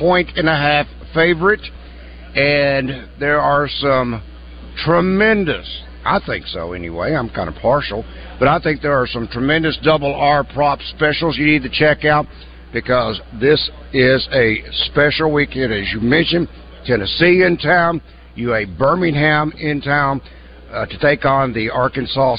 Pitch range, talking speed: 110-155 Hz, 150 wpm